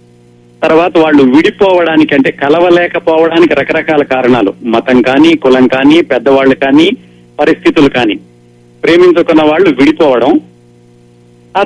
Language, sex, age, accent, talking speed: Telugu, male, 50-69, native, 100 wpm